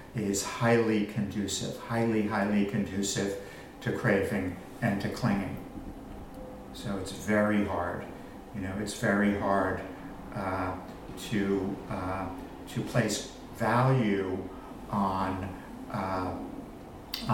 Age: 60-79